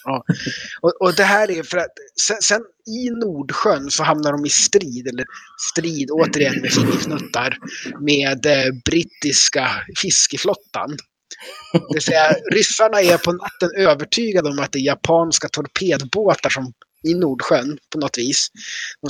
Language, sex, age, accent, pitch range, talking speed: Swedish, male, 30-49, native, 140-185 Hz, 150 wpm